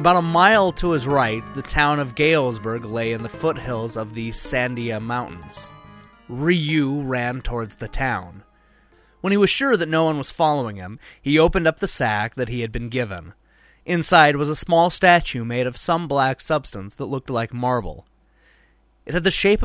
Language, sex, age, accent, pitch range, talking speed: English, male, 30-49, American, 115-170 Hz, 185 wpm